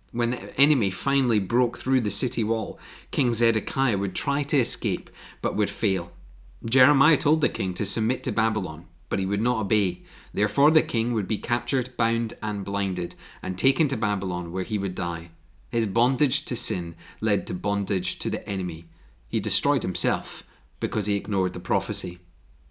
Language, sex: English, male